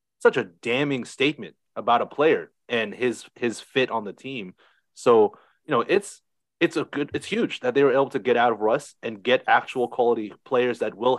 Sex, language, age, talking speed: male, English, 30-49, 210 wpm